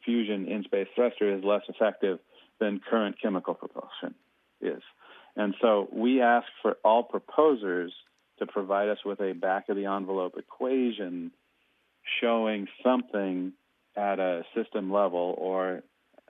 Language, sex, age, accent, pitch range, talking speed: English, male, 40-59, American, 95-120 Hz, 120 wpm